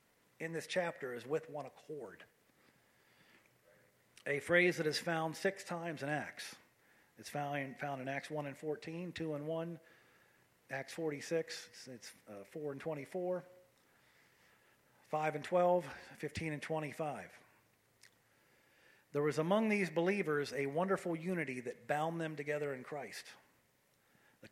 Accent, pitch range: American, 140-175 Hz